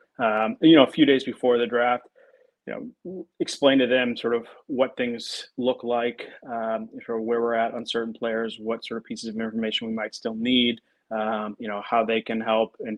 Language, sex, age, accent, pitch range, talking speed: English, male, 30-49, American, 110-130 Hz, 215 wpm